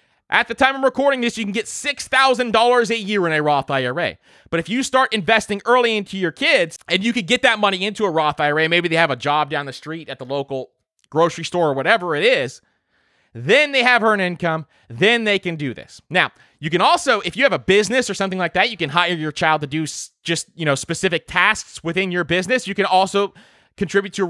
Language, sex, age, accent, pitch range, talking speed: English, male, 20-39, American, 160-225 Hz, 235 wpm